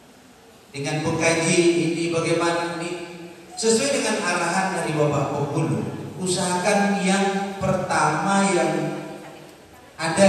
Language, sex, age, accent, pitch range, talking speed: Indonesian, male, 40-59, native, 150-190 Hz, 85 wpm